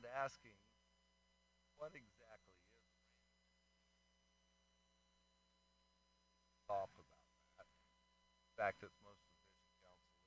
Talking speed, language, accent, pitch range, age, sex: 80 wpm, English, American, 90-110 Hz, 60-79, male